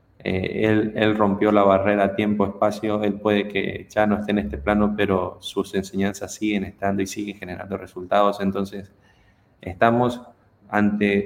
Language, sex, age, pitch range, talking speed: Spanish, male, 20-39, 95-105 Hz, 150 wpm